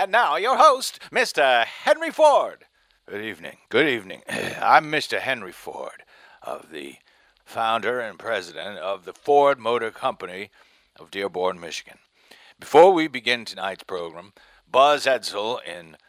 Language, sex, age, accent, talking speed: English, male, 60-79, American, 135 wpm